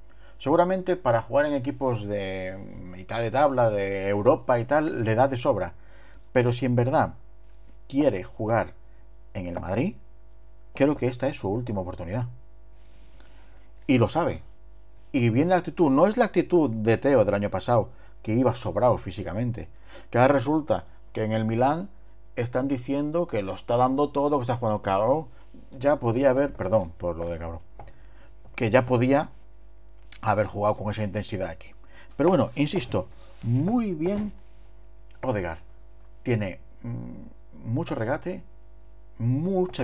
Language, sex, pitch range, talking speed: Spanish, male, 95-130 Hz, 150 wpm